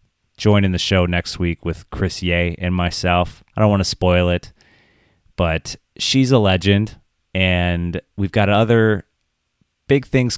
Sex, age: male, 30-49